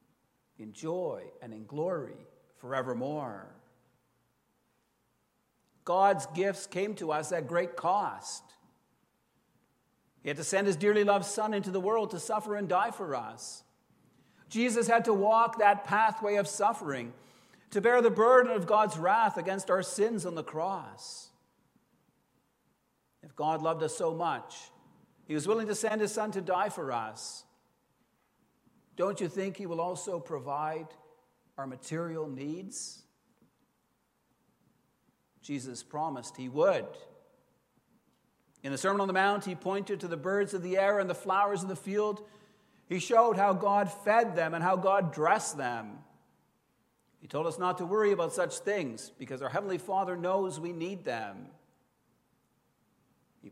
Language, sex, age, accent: English, male, 60-79, American